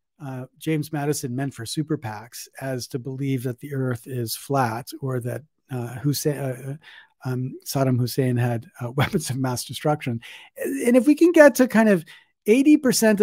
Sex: male